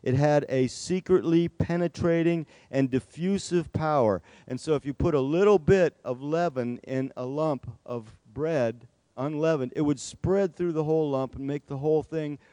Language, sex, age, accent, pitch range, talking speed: English, male, 50-69, American, 125-170 Hz, 170 wpm